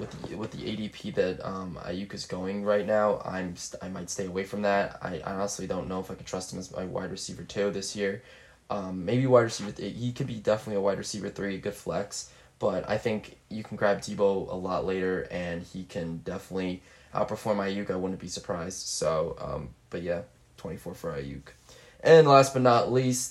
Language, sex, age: English, male, 20-39